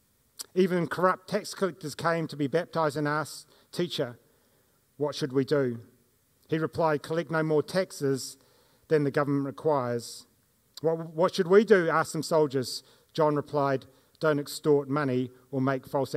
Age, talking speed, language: 40-59, 150 wpm, English